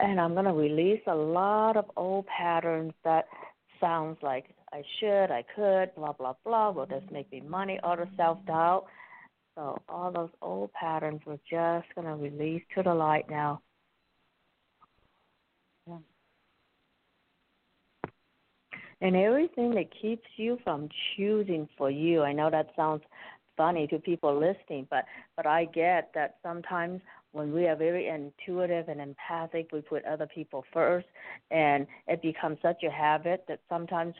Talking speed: 150 wpm